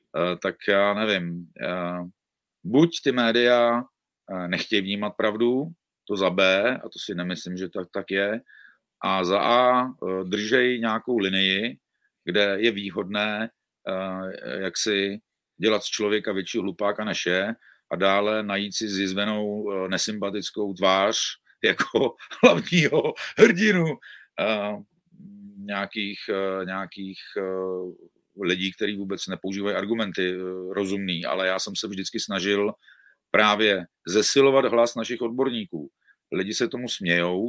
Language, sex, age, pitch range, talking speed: Czech, male, 40-59, 95-115 Hz, 115 wpm